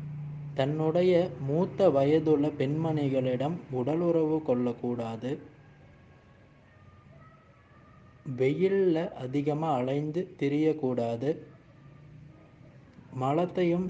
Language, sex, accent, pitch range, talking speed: Tamil, male, native, 130-160 Hz, 45 wpm